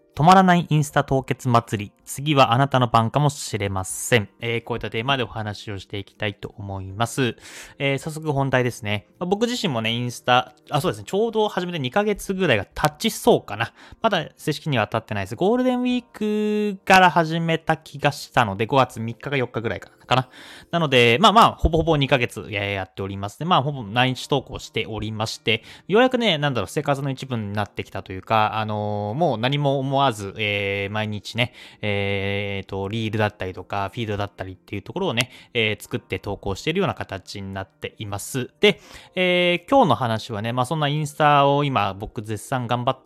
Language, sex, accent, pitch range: Japanese, male, native, 105-155 Hz